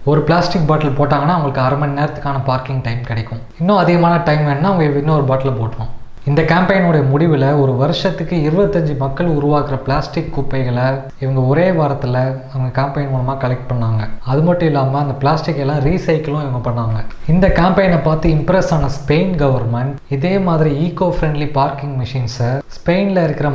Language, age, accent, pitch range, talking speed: Tamil, 20-39, native, 130-155 Hz, 155 wpm